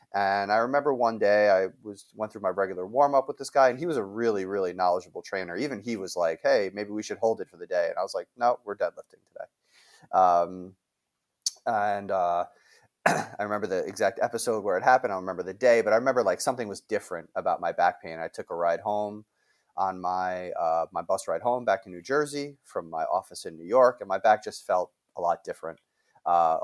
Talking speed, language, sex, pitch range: 230 wpm, English, male, 90-115 Hz